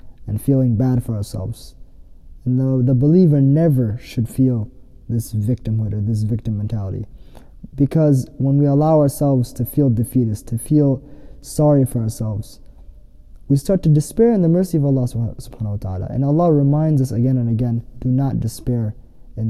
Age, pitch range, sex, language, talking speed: 20-39, 115-145 Hz, male, English, 160 wpm